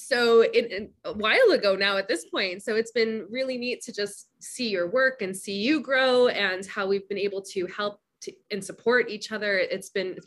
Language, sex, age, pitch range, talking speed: English, female, 20-39, 195-260 Hz, 230 wpm